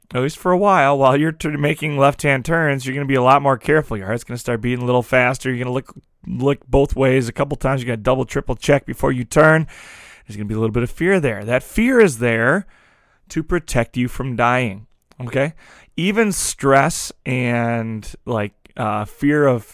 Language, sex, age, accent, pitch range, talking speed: English, male, 30-49, American, 120-145 Hz, 205 wpm